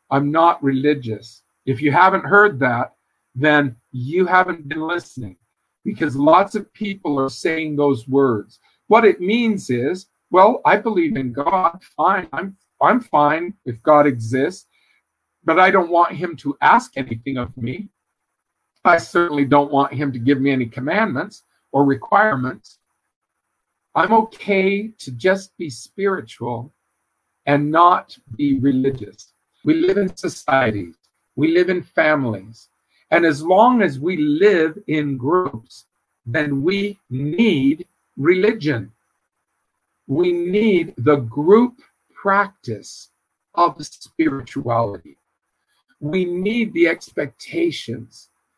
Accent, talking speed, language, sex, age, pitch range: American, 125 wpm, English, male, 50-69, 135-190 Hz